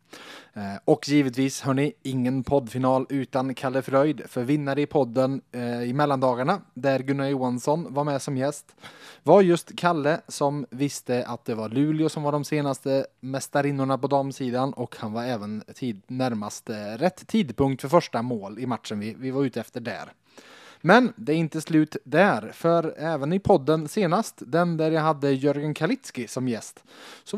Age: 20-39